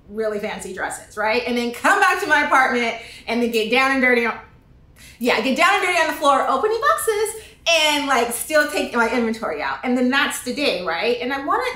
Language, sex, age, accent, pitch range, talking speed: English, female, 30-49, American, 215-270 Hz, 220 wpm